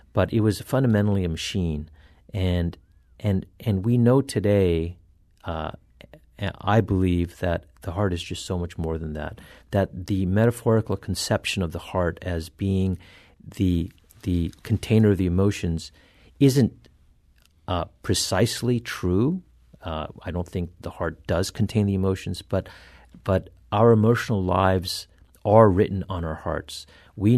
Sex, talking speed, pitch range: male, 140 wpm, 85-105 Hz